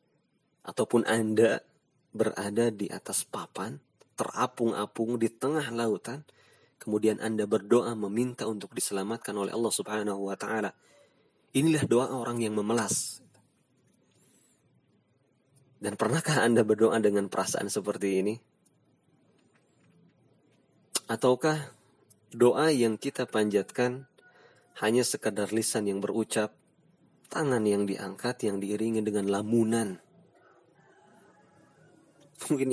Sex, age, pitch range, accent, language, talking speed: male, 30-49, 105-120 Hz, native, Indonesian, 95 wpm